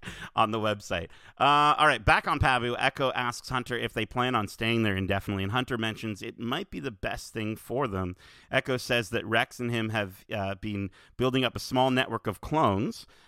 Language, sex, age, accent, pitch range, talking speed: English, male, 40-59, American, 100-125 Hz, 210 wpm